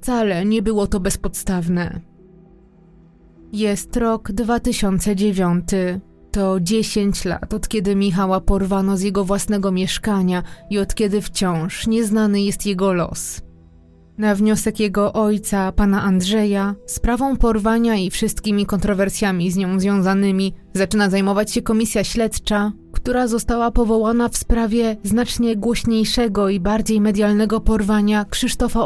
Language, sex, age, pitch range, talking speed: Polish, female, 20-39, 190-220 Hz, 120 wpm